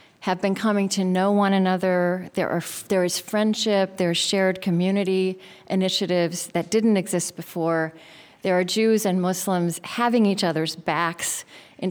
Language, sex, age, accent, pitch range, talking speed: English, female, 40-59, American, 175-220 Hz, 150 wpm